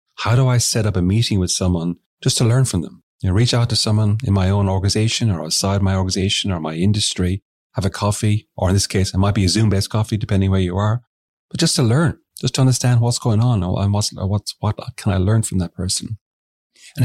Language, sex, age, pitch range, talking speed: English, male, 30-49, 95-110 Hz, 250 wpm